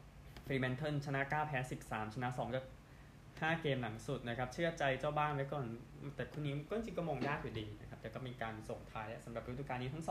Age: 20-39